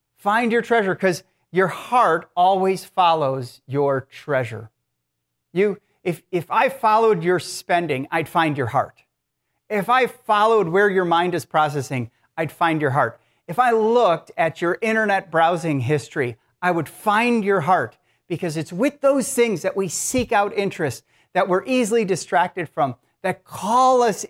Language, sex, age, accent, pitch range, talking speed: English, male, 40-59, American, 130-195 Hz, 160 wpm